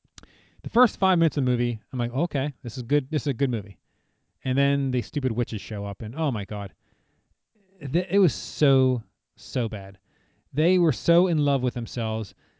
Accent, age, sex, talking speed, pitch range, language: American, 30-49, male, 195 wpm, 120-155 Hz, English